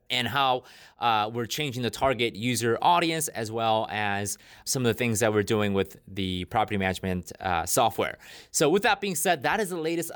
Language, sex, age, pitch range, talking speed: English, male, 30-49, 115-155 Hz, 200 wpm